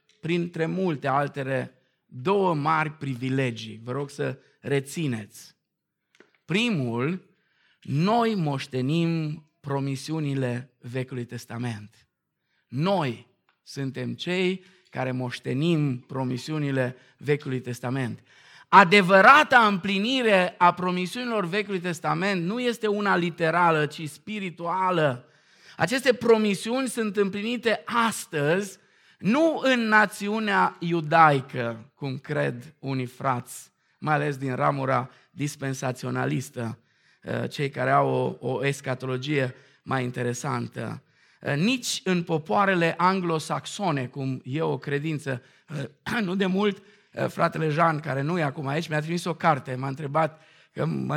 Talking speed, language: 100 wpm, Romanian